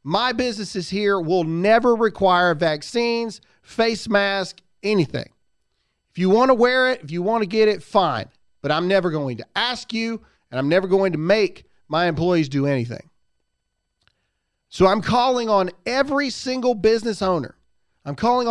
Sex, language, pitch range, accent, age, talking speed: male, English, 160-225 Hz, American, 40-59, 160 wpm